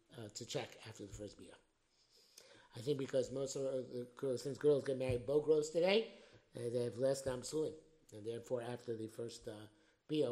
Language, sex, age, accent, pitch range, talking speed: English, male, 50-69, American, 140-190 Hz, 200 wpm